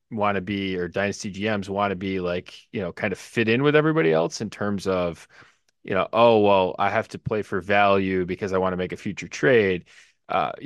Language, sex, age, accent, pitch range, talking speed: English, male, 20-39, American, 95-110 Hz, 230 wpm